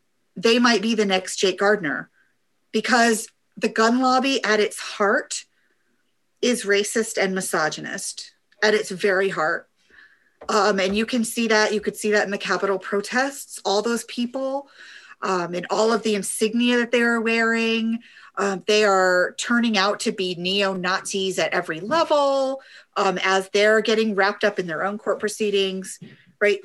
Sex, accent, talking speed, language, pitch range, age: female, American, 165 wpm, English, 200-260 Hz, 40-59